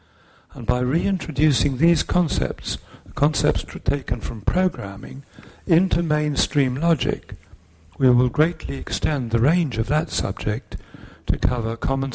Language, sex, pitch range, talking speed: English, male, 95-140 Hz, 120 wpm